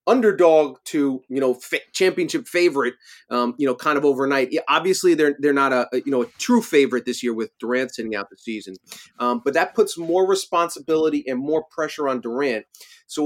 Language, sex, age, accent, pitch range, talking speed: English, male, 30-49, American, 125-165 Hz, 200 wpm